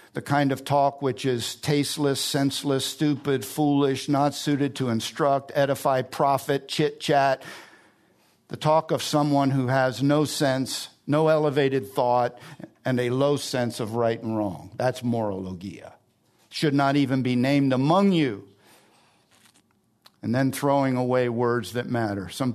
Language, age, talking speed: English, 50-69, 140 wpm